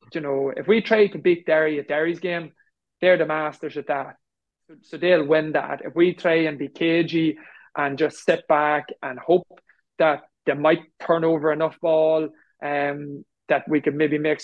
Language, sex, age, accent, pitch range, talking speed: English, male, 20-39, Irish, 145-165 Hz, 185 wpm